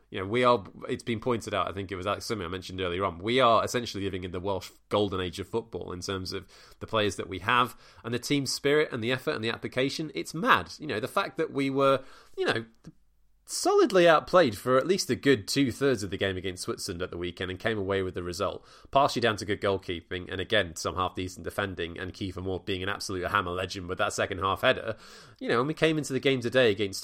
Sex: male